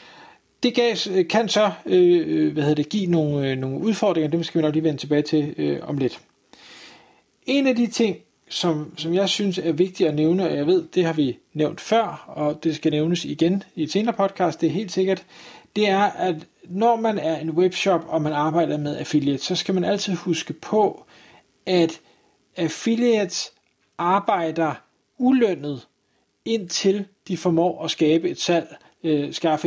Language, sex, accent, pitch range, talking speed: Danish, male, native, 160-205 Hz, 180 wpm